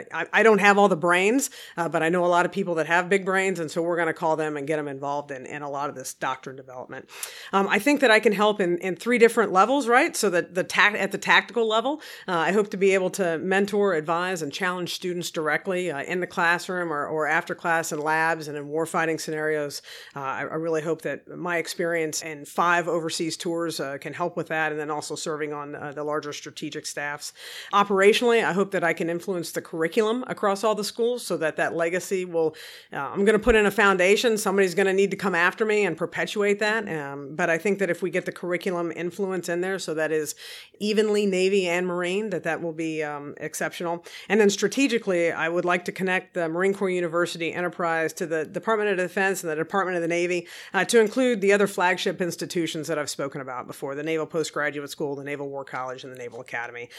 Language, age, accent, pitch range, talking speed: English, 50-69, American, 155-195 Hz, 235 wpm